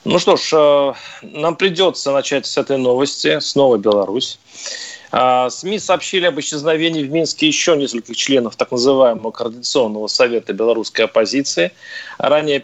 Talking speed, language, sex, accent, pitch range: 130 wpm, Russian, male, native, 125-155 Hz